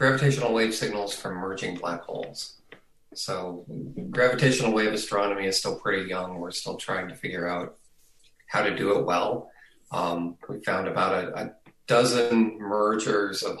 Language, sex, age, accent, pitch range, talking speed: English, male, 30-49, American, 95-120 Hz, 155 wpm